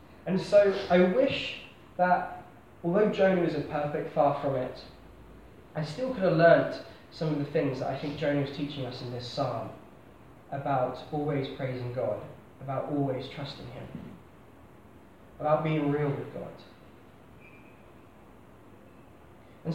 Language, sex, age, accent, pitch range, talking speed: English, male, 10-29, British, 140-180 Hz, 140 wpm